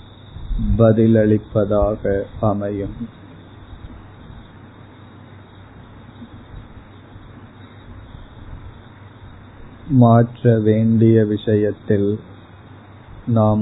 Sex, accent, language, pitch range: male, native, Tamil, 105-115 Hz